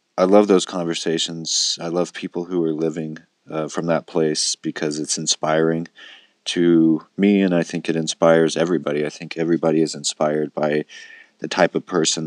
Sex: male